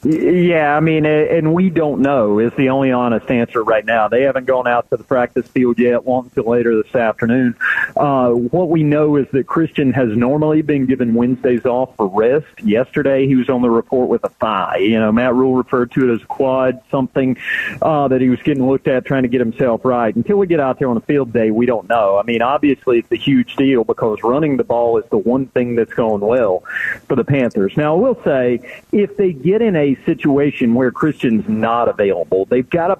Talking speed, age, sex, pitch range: 225 wpm, 40-59, male, 120-145 Hz